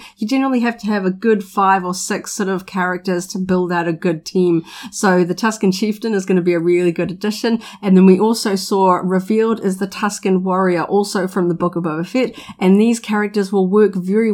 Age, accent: 40-59, Australian